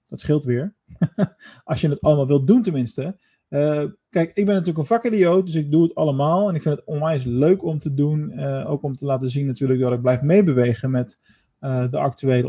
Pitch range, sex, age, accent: 135-165 Hz, male, 20-39, Dutch